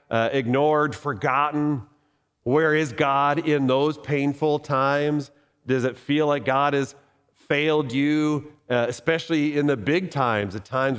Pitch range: 130-155 Hz